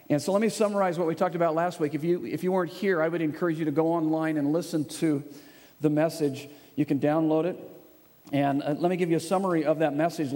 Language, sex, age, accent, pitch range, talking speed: English, male, 50-69, American, 155-195 Hz, 250 wpm